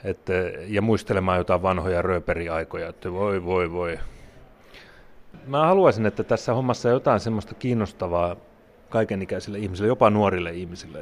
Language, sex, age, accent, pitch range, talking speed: Finnish, male, 30-49, native, 90-110 Hz, 130 wpm